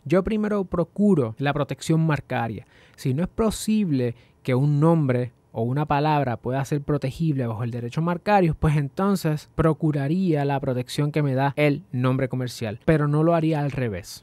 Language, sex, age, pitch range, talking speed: Spanish, male, 20-39, 130-165 Hz, 170 wpm